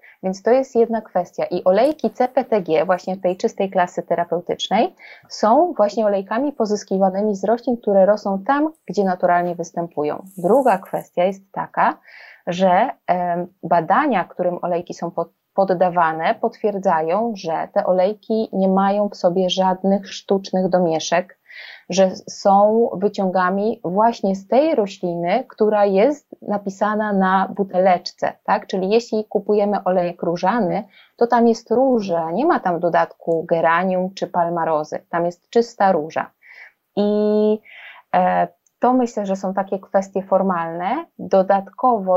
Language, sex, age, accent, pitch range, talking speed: Polish, female, 20-39, native, 185-215 Hz, 125 wpm